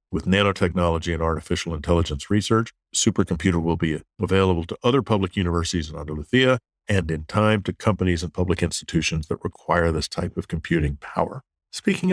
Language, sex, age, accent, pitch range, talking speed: English, male, 50-69, American, 85-110 Hz, 160 wpm